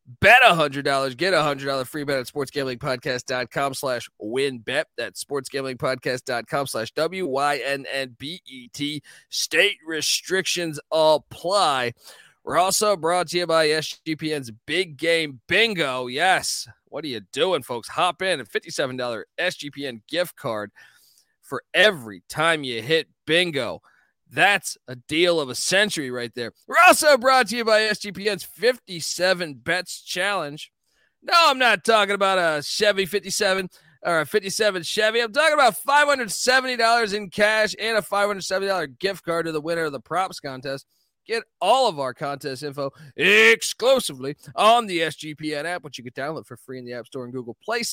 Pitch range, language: 135-195 Hz, English